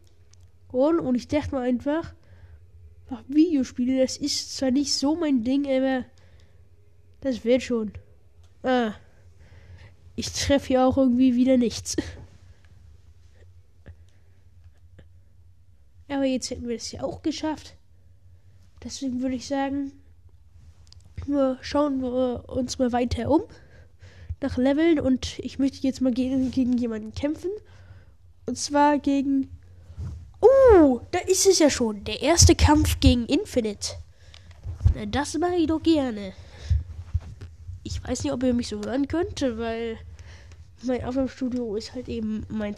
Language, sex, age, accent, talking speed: German, female, 10-29, German, 130 wpm